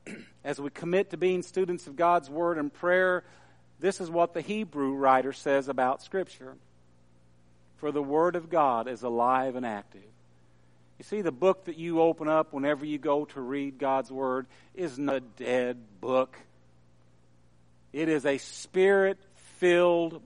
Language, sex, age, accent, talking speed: English, male, 50-69, American, 155 wpm